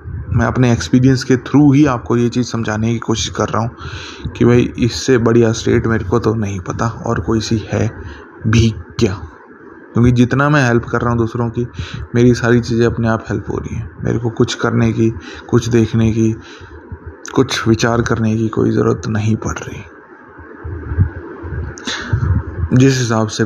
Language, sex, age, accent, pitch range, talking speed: Hindi, male, 20-39, native, 110-120 Hz, 175 wpm